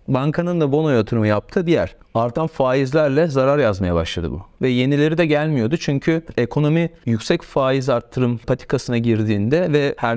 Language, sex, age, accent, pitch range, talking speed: Turkish, male, 40-59, native, 120-155 Hz, 150 wpm